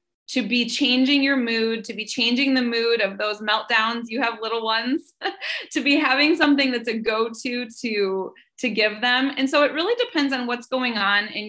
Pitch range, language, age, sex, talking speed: 220-285 Hz, English, 20-39, female, 200 wpm